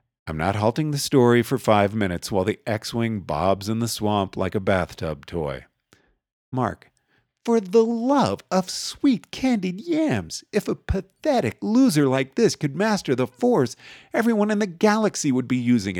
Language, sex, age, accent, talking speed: English, male, 40-59, American, 165 wpm